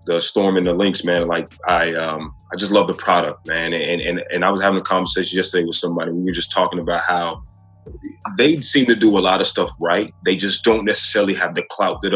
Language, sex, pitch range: English, male, 85-105 Hz